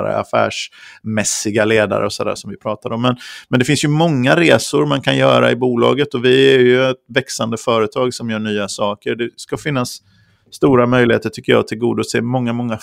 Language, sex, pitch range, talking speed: Swedish, male, 110-130 Hz, 195 wpm